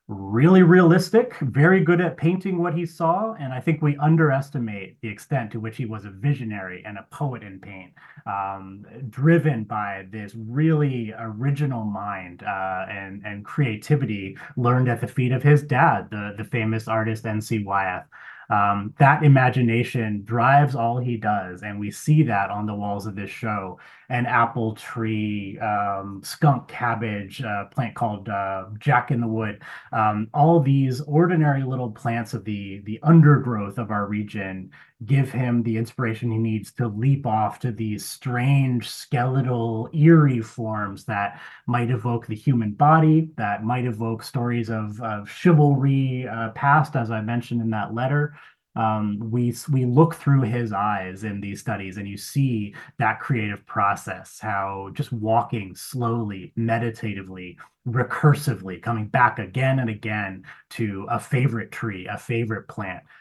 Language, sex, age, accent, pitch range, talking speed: English, male, 30-49, American, 105-135 Hz, 155 wpm